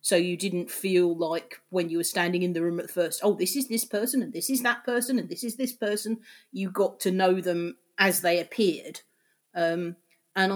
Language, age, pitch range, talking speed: English, 40-59, 165-180 Hz, 220 wpm